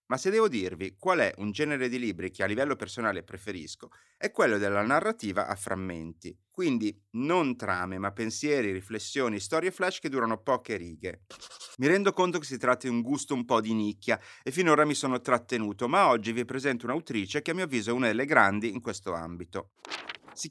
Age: 30-49